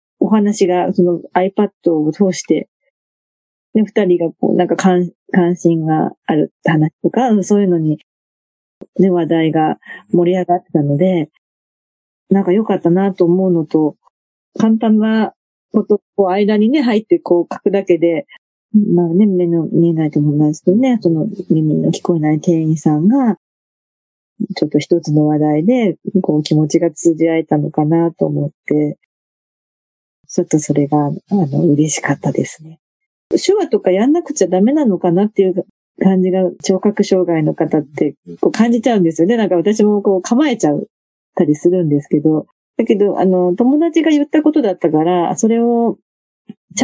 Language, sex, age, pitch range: Japanese, female, 40-59, 160-205 Hz